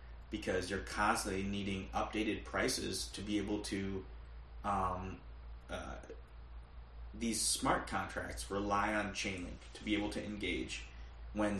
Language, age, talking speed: English, 20-39, 125 wpm